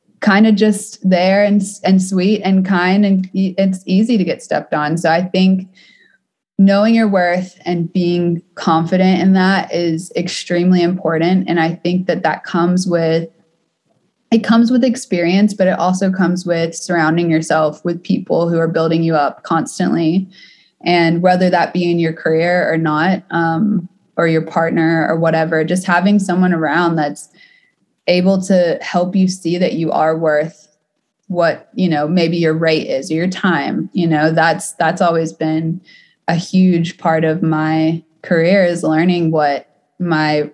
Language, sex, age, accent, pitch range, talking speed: English, female, 20-39, American, 160-185 Hz, 165 wpm